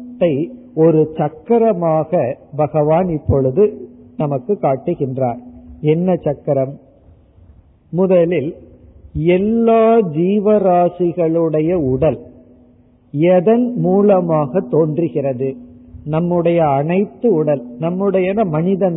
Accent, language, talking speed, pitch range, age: native, Tamil, 65 wpm, 145-195 Hz, 50-69